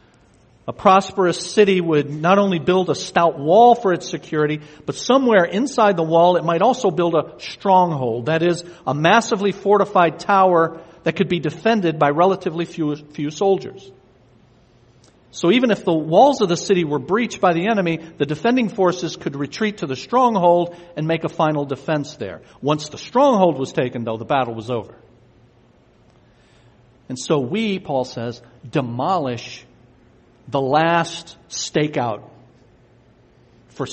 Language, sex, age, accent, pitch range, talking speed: English, male, 50-69, American, 145-185 Hz, 150 wpm